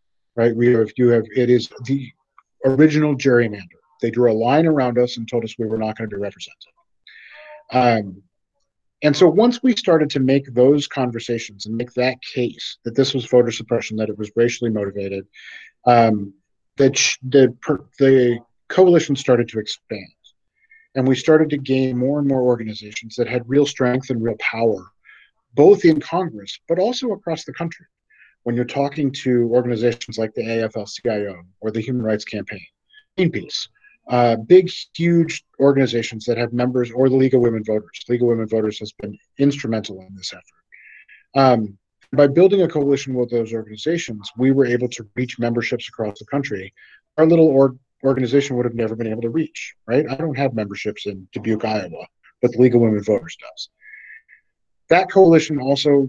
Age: 40-59